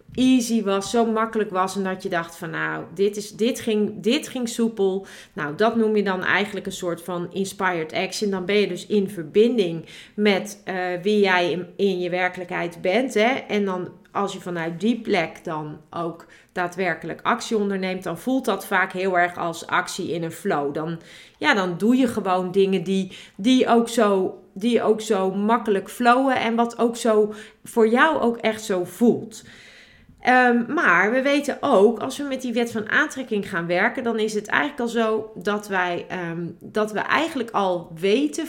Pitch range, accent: 185-230 Hz, Dutch